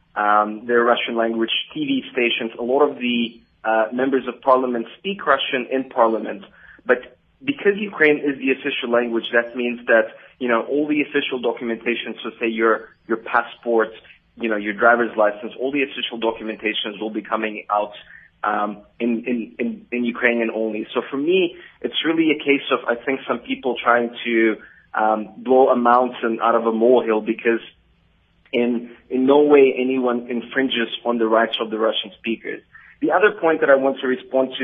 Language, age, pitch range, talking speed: English, 20-39, 115-130 Hz, 180 wpm